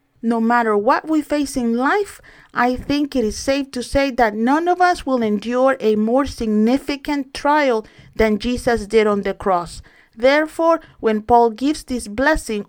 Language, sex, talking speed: English, female, 170 wpm